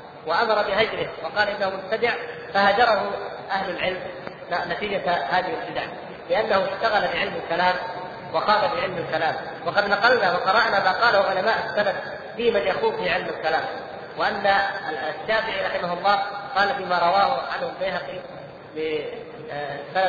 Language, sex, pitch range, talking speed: Arabic, female, 190-250 Hz, 120 wpm